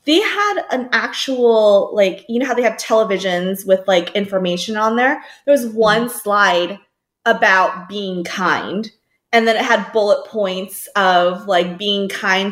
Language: English